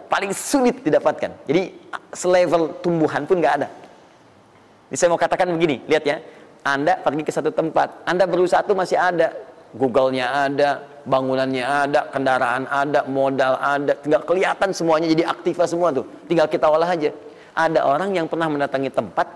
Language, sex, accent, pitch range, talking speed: Indonesian, male, native, 140-180 Hz, 150 wpm